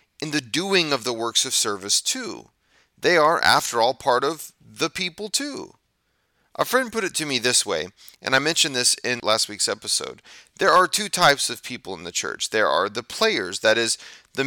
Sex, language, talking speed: male, English, 205 wpm